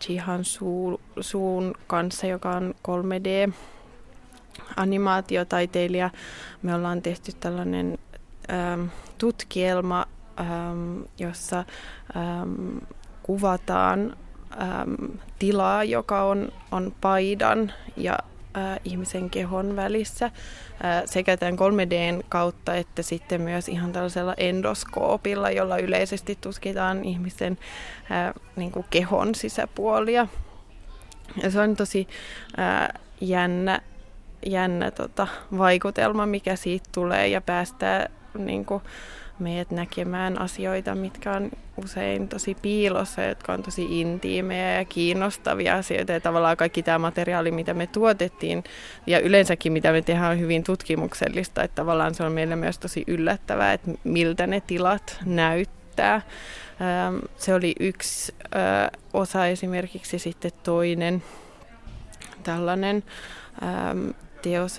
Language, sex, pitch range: Finnish, female, 170-195 Hz